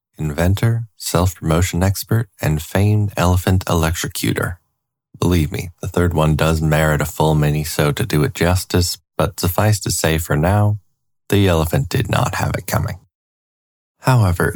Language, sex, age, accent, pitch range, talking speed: English, male, 20-39, American, 80-105 Hz, 150 wpm